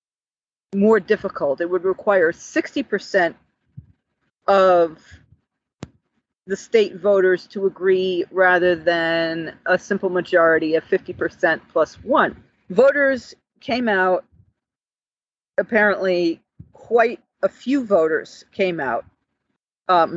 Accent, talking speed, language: American, 95 wpm, English